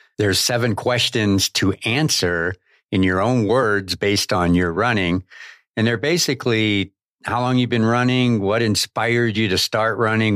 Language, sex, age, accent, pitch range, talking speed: English, male, 60-79, American, 95-120 Hz, 155 wpm